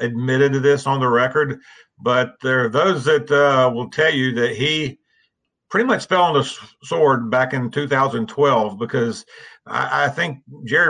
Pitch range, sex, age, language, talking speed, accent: 120-140 Hz, male, 50-69, English, 175 wpm, American